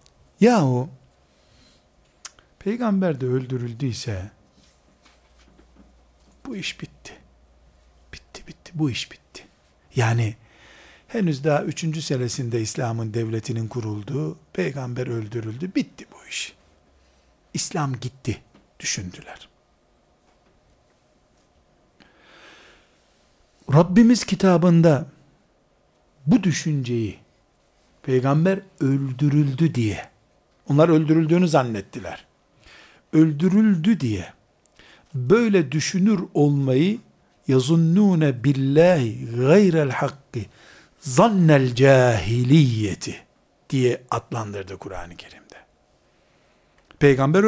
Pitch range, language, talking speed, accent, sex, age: 115-165 Hz, Turkish, 70 wpm, native, male, 60-79